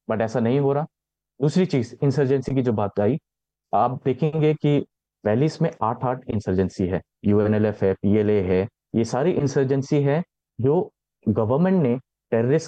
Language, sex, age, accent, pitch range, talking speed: Hindi, male, 30-49, native, 120-165 Hz, 50 wpm